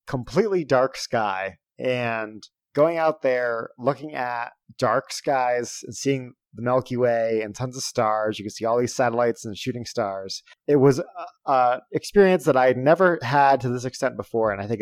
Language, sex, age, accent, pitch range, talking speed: English, male, 30-49, American, 115-145 Hz, 185 wpm